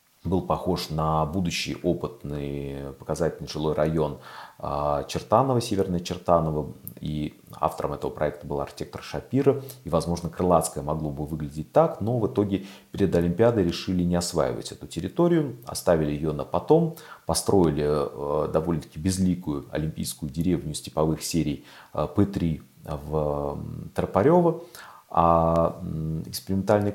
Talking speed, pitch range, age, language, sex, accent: 115 wpm, 75-95 Hz, 30-49, Russian, male, native